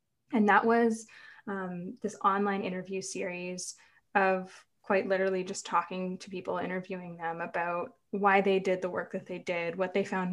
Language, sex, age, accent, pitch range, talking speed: English, female, 20-39, American, 180-220 Hz, 170 wpm